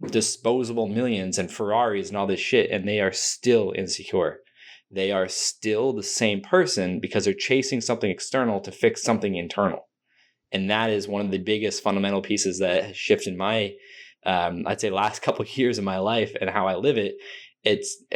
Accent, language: American, English